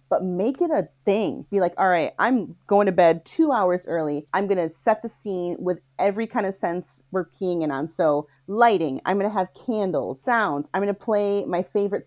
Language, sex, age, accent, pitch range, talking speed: English, female, 30-49, American, 180-255 Hz, 210 wpm